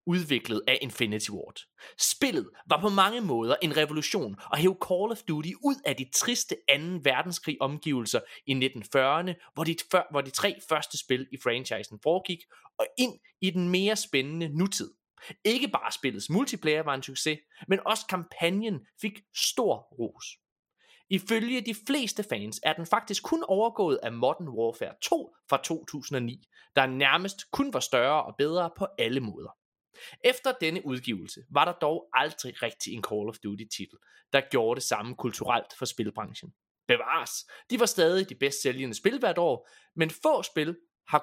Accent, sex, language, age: native, male, Danish, 30-49